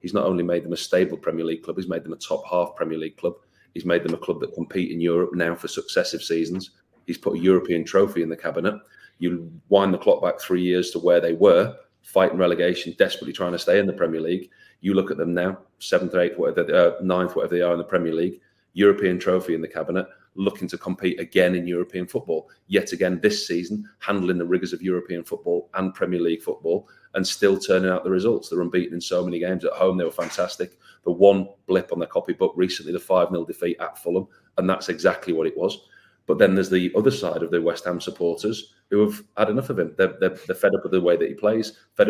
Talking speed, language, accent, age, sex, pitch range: 240 wpm, English, British, 30-49, male, 90-145 Hz